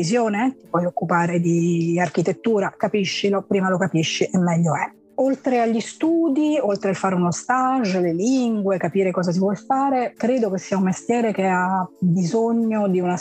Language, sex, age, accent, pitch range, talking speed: Italian, female, 30-49, native, 180-220 Hz, 175 wpm